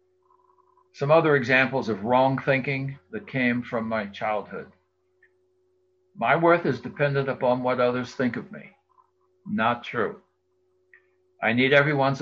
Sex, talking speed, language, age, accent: male, 130 wpm, English, 60-79, American